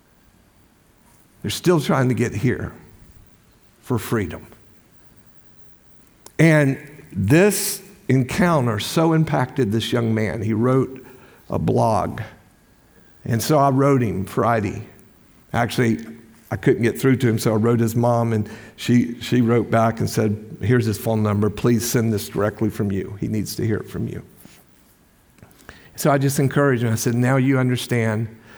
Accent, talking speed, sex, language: American, 150 wpm, male, English